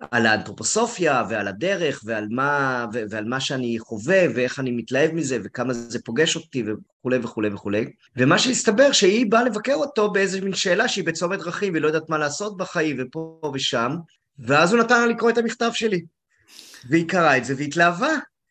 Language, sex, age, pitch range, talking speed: Hebrew, male, 30-49, 120-190 Hz, 180 wpm